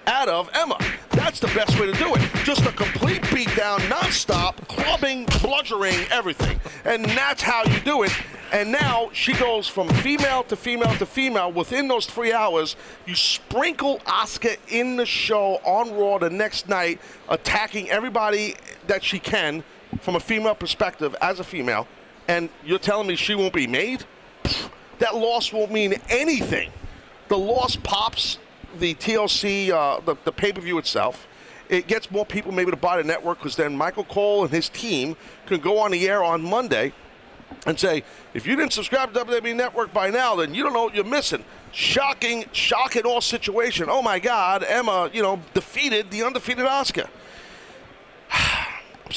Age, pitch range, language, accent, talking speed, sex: 40-59, 185-240 Hz, English, American, 170 wpm, male